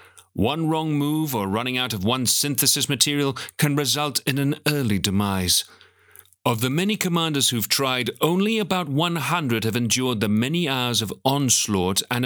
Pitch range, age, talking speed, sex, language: 115-145 Hz, 40-59, 160 wpm, male, English